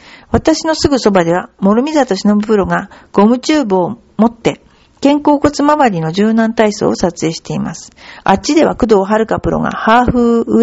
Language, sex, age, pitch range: Japanese, female, 50-69, 190-265 Hz